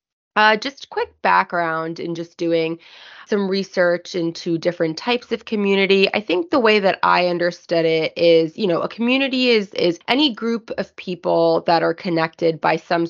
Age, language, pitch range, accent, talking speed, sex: 20-39, English, 165-220 Hz, American, 175 wpm, female